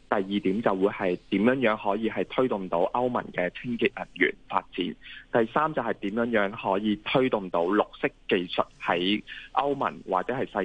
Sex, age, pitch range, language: male, 20-39, 95-120 Hz, Chinese